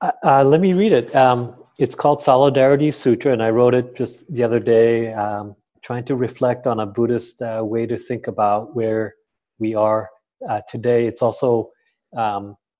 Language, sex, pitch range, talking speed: English, male, 110-125 Hz, 180 wpm